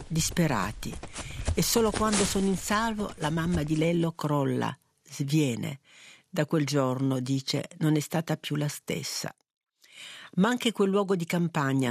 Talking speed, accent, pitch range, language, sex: 145 wpm, native, 140-175 Hz, Italian, female